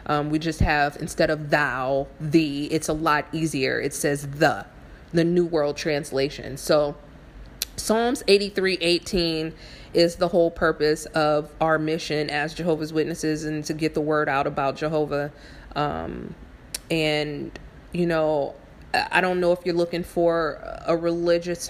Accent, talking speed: American, 150 wpm